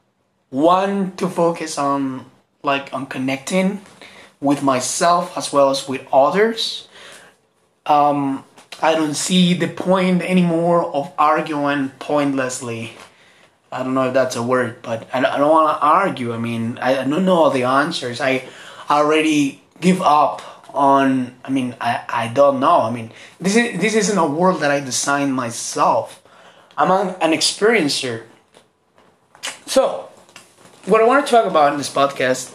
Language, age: English, 20-39